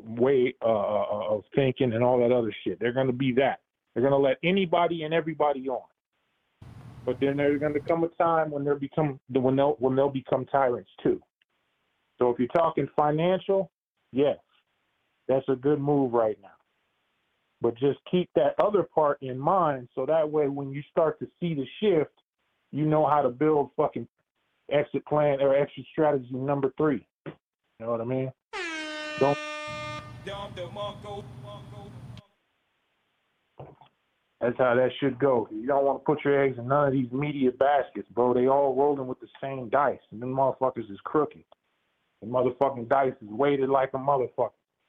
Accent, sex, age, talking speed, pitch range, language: American, male, 20-39, 165 wpm, 130-155 Hz, English